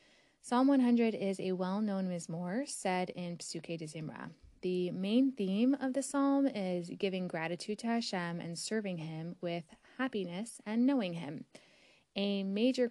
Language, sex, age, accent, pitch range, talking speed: English, female, 20-39, American, 170-230 Hz, 150 wpm